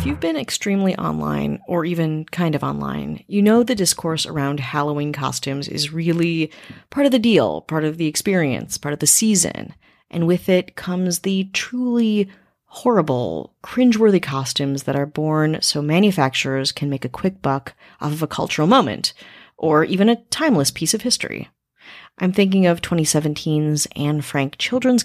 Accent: American